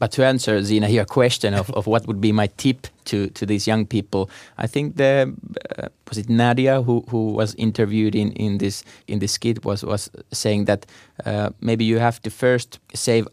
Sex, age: male, 20-39